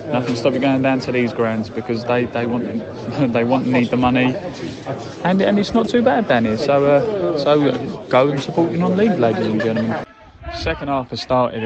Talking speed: 195 wpm